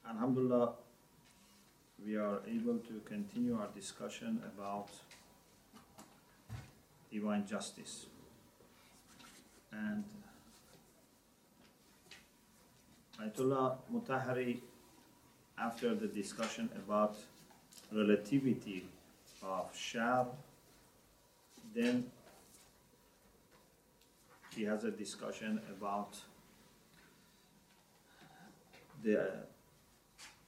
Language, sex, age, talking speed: English, male, 40-59, 55 wpm